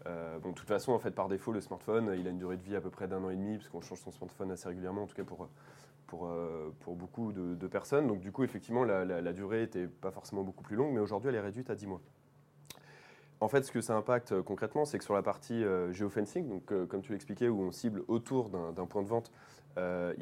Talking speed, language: 275 wpm, French